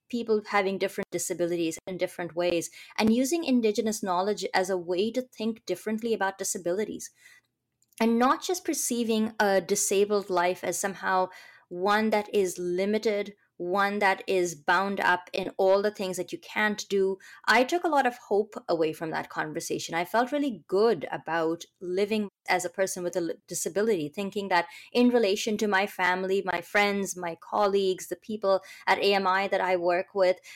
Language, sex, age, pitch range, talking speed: English, female, 20-39, 180-220 Hz, 170 wpm